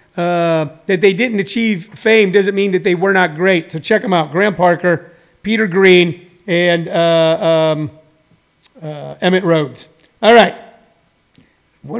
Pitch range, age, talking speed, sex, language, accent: 165-205 Hz, 50-69, 150 wpm, male, English, American